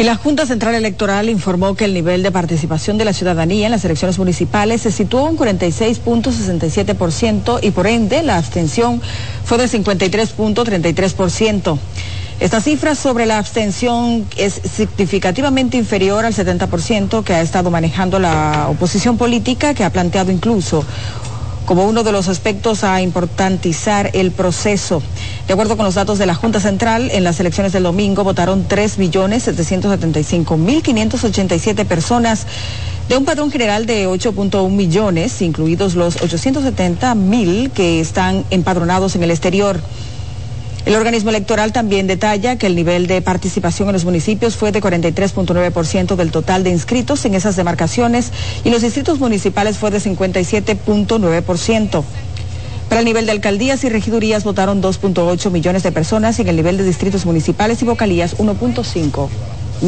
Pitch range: 170-220 Hz